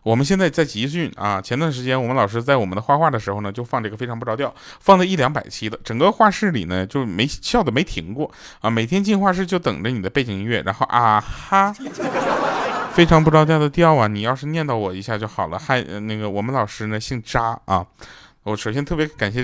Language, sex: Chinese, male